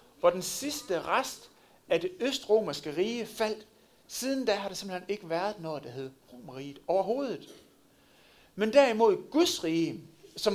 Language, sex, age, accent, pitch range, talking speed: Danish, male, 60-79, native, 170-245 Hz, 150 wpm